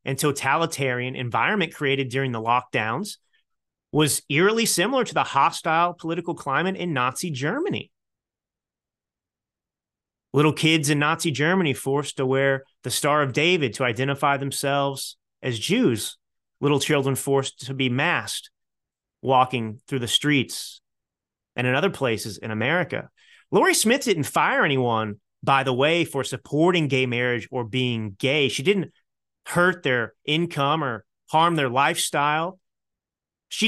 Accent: American